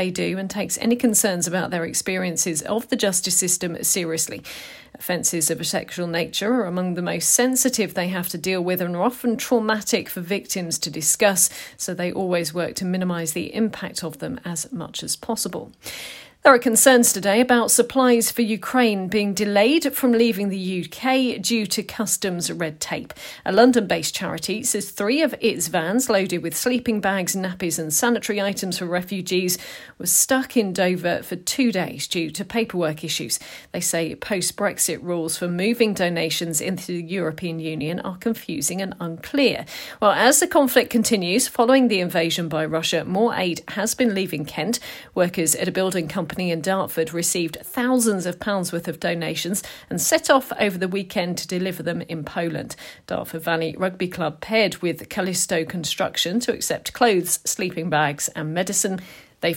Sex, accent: female, British